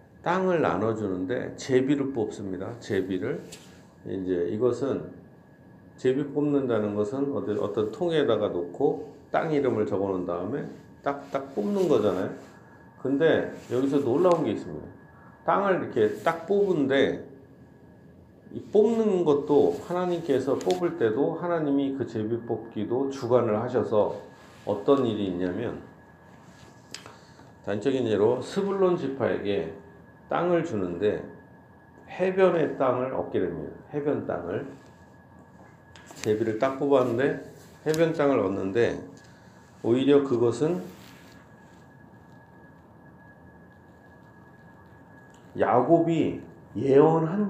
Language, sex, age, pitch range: Korean, male, 40-59, 115-165 Hz